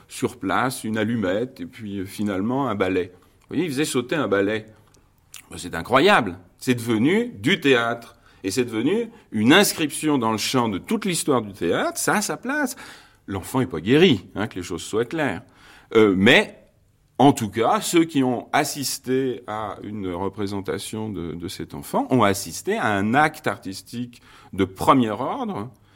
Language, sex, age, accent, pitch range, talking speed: French, male, 40-59, French, 95-140 Hz, 175 wpm